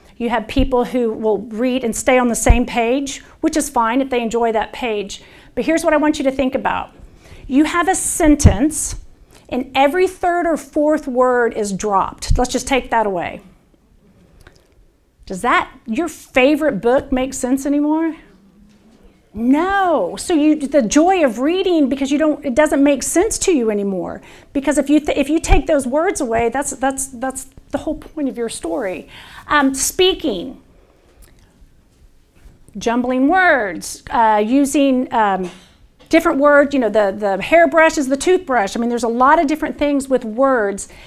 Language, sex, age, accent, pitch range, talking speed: English, female, 40-59, American, 235-295 Hz, 170 wpm